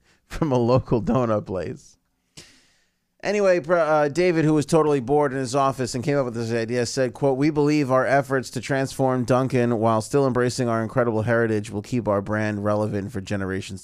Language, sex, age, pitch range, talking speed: English, male, 30-49, 105-130 Hz, 185 wpm